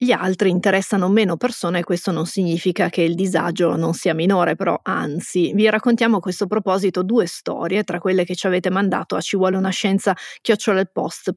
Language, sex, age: Italian, female, 30-49